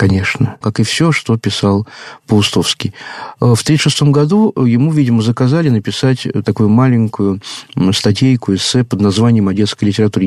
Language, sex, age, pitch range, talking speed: Russian, male, 50-69, 105-140 Hz, 135 wpm